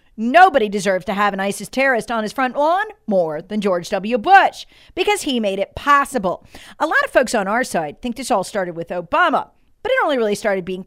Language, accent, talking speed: English, American, 220 wpm